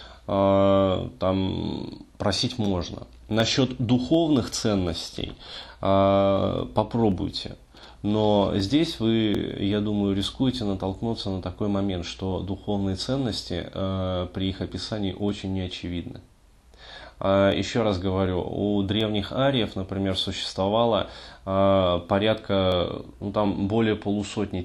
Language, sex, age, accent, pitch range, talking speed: Russian, male, 20-39, native, 95-105 Hz, 95 wpm